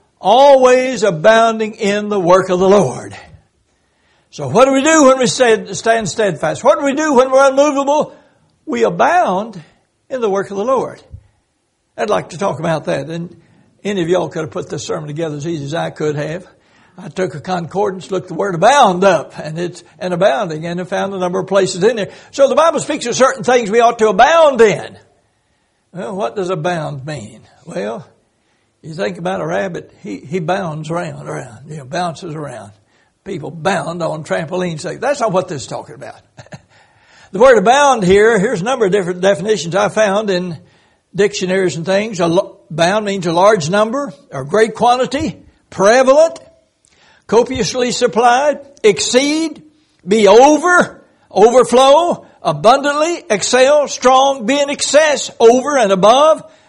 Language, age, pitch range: English, 60-79, 170-250 Hz